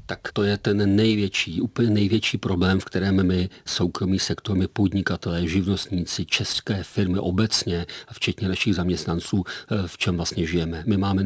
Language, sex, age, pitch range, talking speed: Czech, male, 40-59, 90-105 Hz, 150 wpm